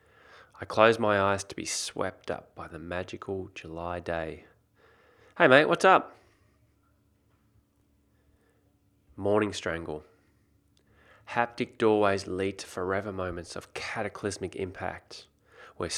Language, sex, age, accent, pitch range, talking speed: English, male, 20-39, Australian, 90-100 Hz, 110 wpm